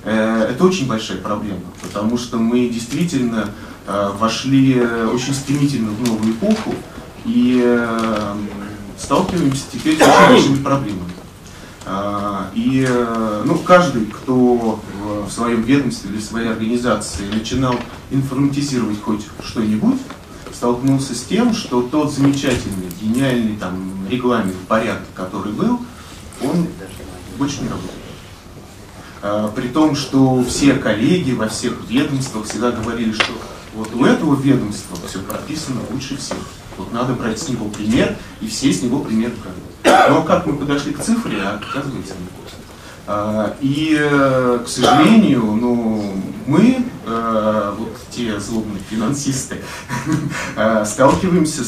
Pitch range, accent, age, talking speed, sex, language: 105-135 Hz, native, 30-49, 120 wpm, male, Russian